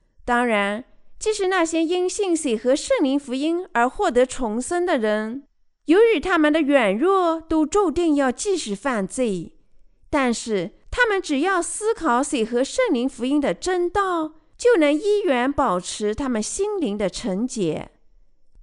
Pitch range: 220-325 Hz